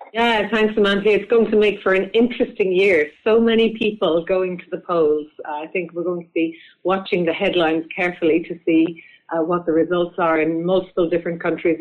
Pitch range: 160-205 Hz